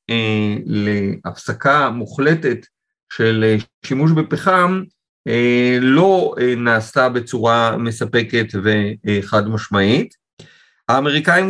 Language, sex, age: Hebrew, male, 50-69